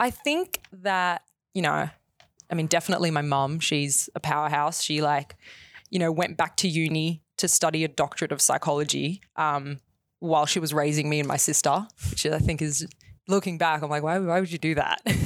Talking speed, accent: 195 wpm, Australian